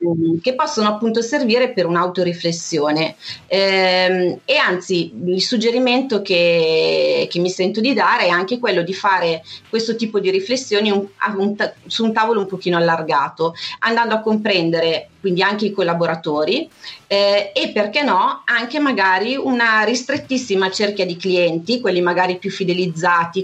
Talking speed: 135 wpm